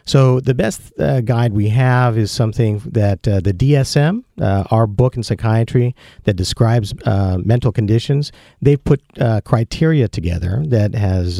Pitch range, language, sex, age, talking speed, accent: 100-125 Hz, English, male, 50-69, 160 wpm, American